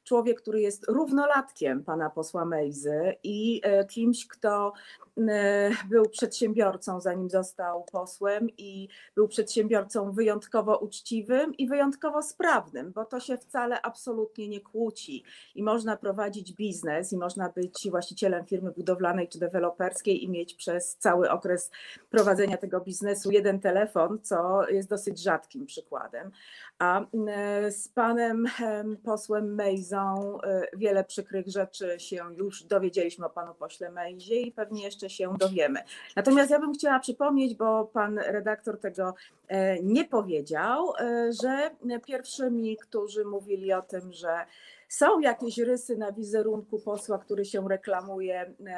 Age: 30-49